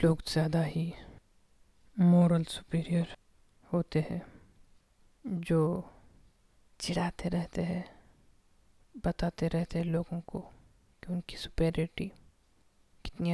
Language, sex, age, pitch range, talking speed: Hindi, female, 20-39, 160-175 Hz, 90 wpm